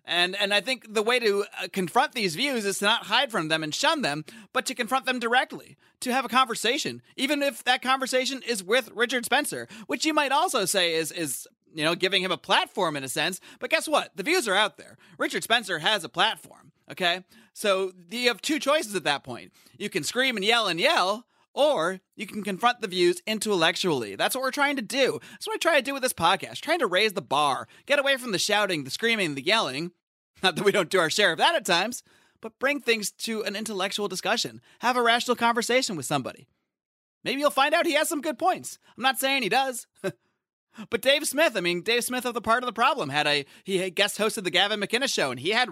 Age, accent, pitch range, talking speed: 30-49, American, 185-260 Hz, 240 wpm